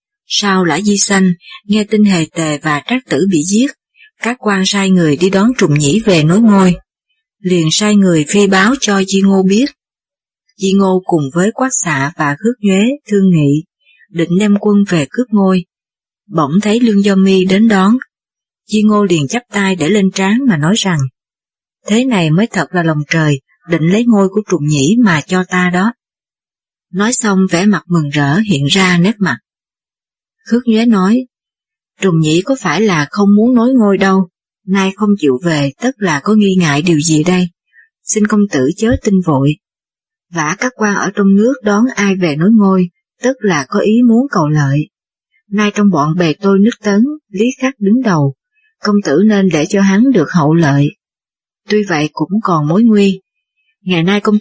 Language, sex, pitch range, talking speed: Vietnamese, female, 175-220 Hz, 190 wpm